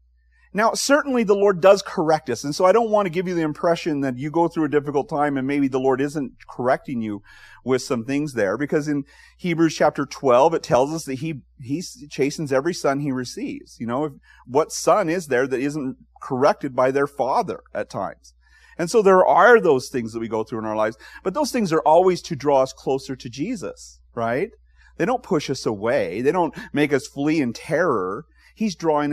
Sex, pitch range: male, 120-185 Hz